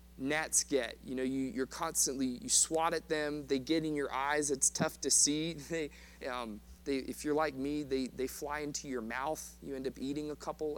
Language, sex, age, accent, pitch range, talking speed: English, male, 30-49, American, 130-165 Hz, 215 wpm